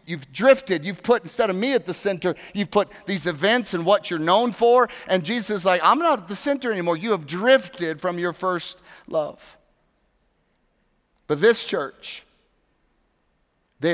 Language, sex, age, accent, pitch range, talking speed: English, male, 40-59, American, 150-185 Hz, 170 wpm